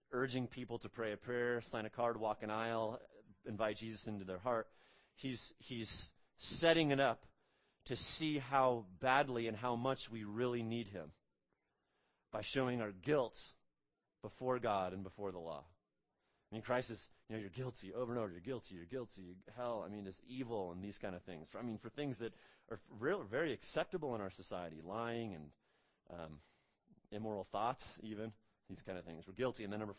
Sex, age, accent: male, 30-49, American